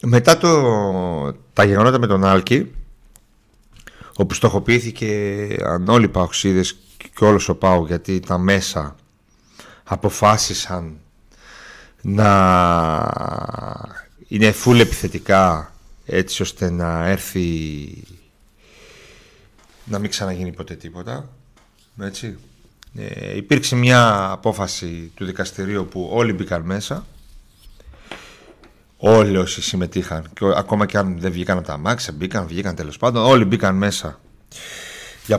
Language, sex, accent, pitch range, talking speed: Greek, male, Spanish, 95-130 Hz, 110 wpm